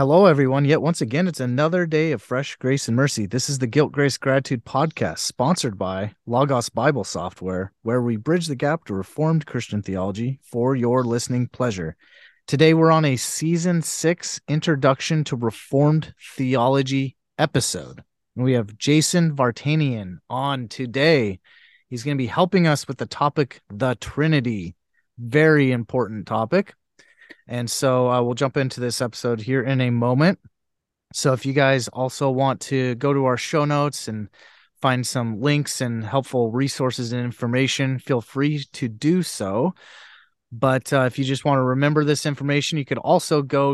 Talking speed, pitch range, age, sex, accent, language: 165 wpm, 120-145 Hz, 30-49, male, American, English